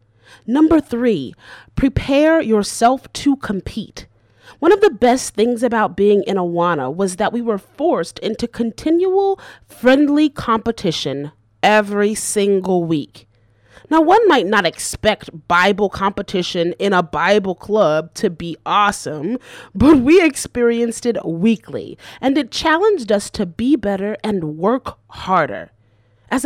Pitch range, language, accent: 170-270 Hz, English, American